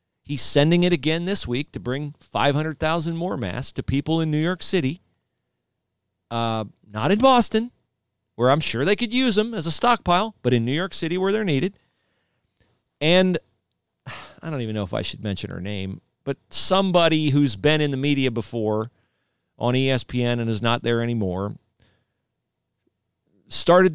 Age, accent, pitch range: 40-59, American, 125-195 Hz